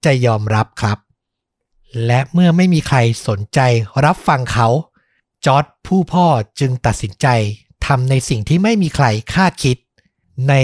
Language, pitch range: Thai, 115-160 Hz